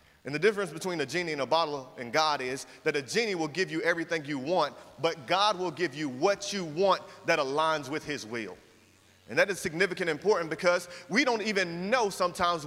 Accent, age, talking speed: American, 30-49, 215 wpm